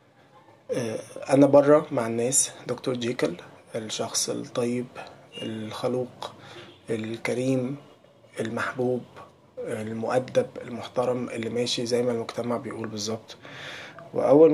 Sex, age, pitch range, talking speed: male, 20-39, 120-140 Hz, 85 wpm